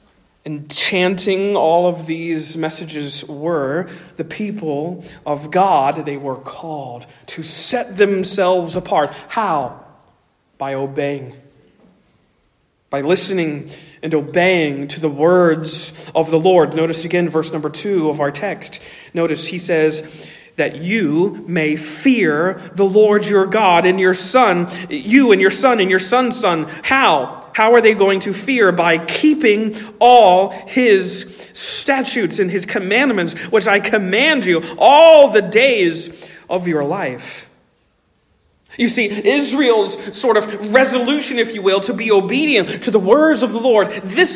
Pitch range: 170-240 Hz